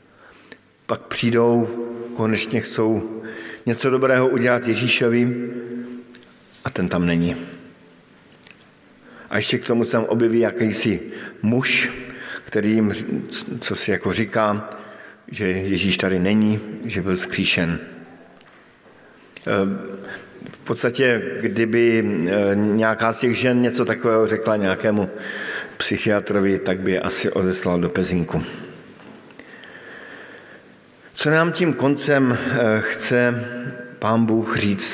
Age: 50-69